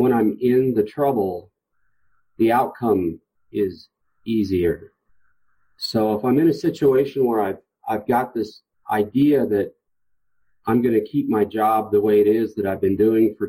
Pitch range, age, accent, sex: 100-125 Hz, 40-59, American, male